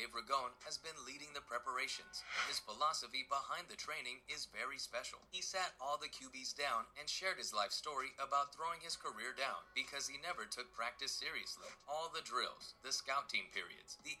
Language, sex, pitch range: English, male, 125-155 Hz